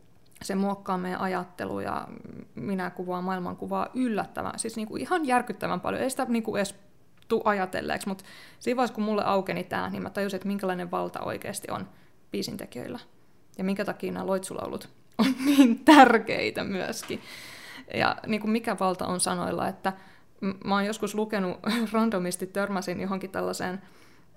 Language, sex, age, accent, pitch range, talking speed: Finnish, female, 20-39, native, 185-230 Hz, 155 wpm